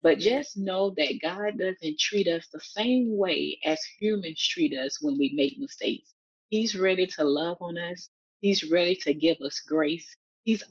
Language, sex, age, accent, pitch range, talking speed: English, female, 30-49, American, 155-210 Hz, 180 wpm